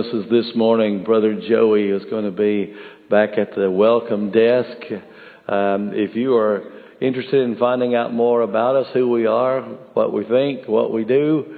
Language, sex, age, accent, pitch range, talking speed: English, male, 50-69, American, 100-120 Hz, 170 wpm